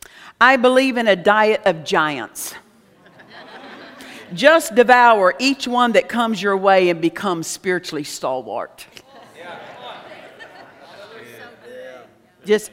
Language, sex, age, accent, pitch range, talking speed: English, female, 50-69, American, 210-270 Hz, 95 wpm